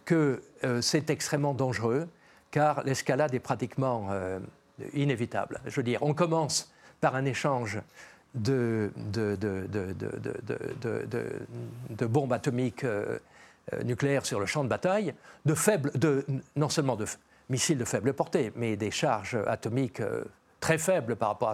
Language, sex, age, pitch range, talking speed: French, male, 50-69, 120-150 Hz, 160 wpm